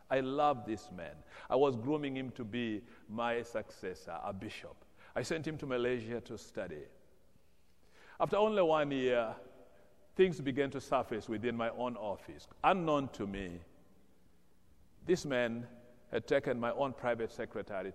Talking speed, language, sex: 145 wpm, English, male